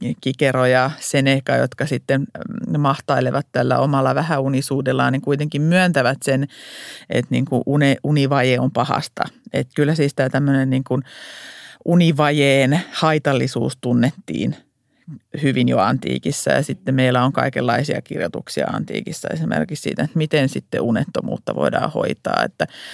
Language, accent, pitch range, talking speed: Finnish, native, 130-165 Hz, 125 wpm